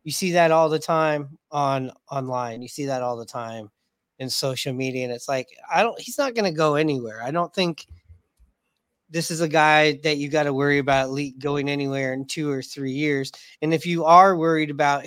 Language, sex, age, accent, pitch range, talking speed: English, male, 30-49, American, 135-160 Hz, 215 wpm